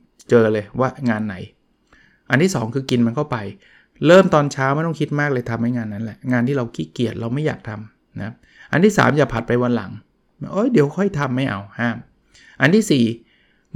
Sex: male